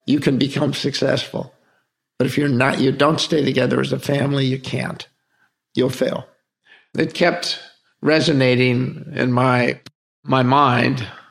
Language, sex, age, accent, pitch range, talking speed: English, male, 50-69, American, 125-145 Hz, 145 wpm